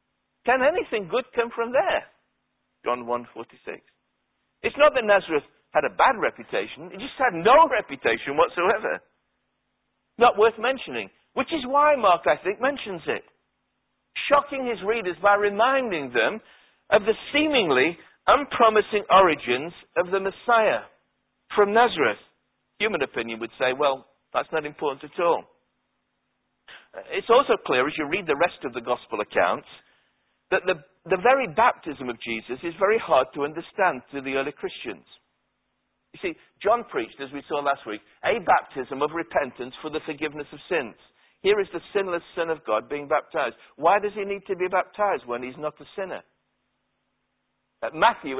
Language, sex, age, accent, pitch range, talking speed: English, male, 60-79, British, 145-235 Hz, 160 wpm